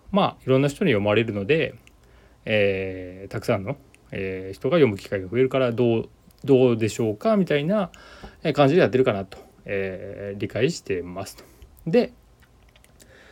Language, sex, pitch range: Japanese, male, 100-135 Hz